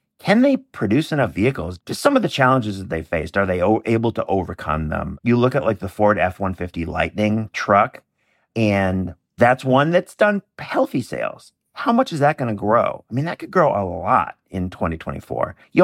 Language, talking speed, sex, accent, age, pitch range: English, 195 wpm, male, American, 50-69, 95-125 Hz